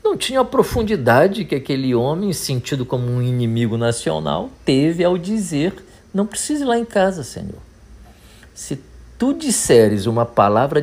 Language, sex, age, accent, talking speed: Portuguese, male, 50-69, Brazilian, 150 wpm